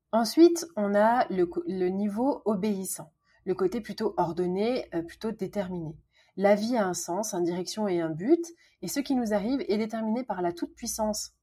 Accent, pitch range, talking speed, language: French, 175-215 Hz, 180 wpm, French